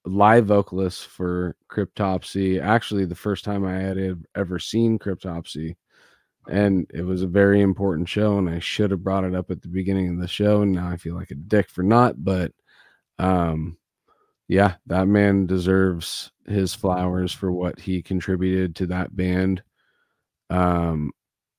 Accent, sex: American, male